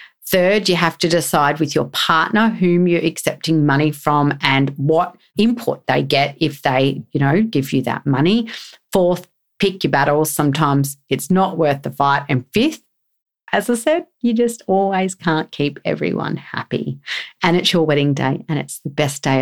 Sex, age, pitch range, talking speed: female, 40-59, 145-195 Hz, 180 wpm